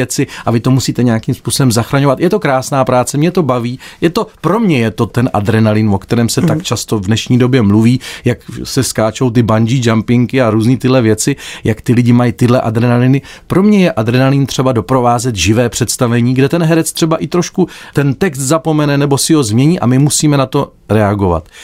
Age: 40-59